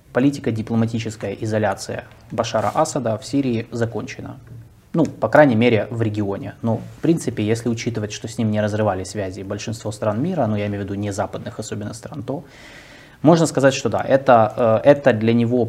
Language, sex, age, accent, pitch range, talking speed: Russian, male, 20-39, native, 105-125 Hz, 175 wpm